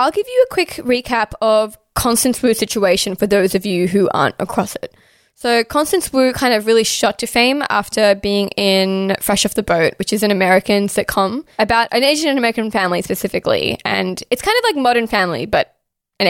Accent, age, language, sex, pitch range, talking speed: Australian, 10-29, English, female, 200-240 Hz, 205 wpm